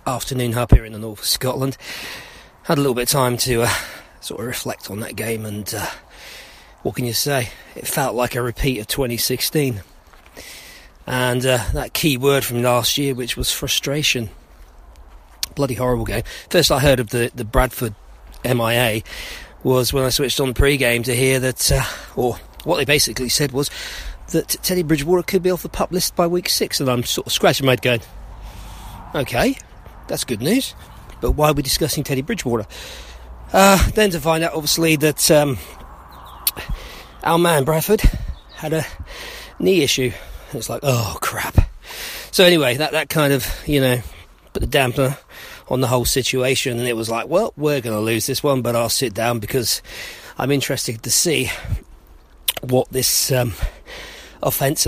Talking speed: 180 wpm